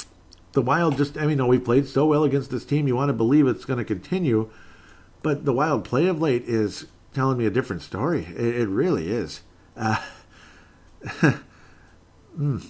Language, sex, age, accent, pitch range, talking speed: English, male, 50-69, American, 95-125 Hz, 185 wpm